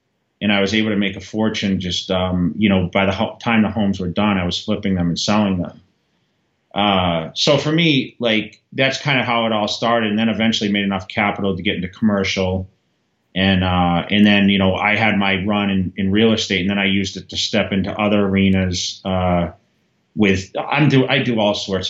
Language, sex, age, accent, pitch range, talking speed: English, male, 30-49, American, 90-110 Hz, 220 wpm